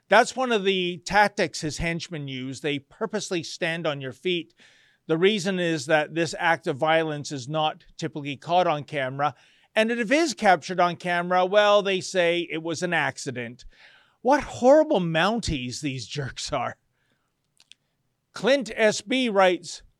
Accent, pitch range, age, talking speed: American, 150-210 Hz, 40-59, 155 wpm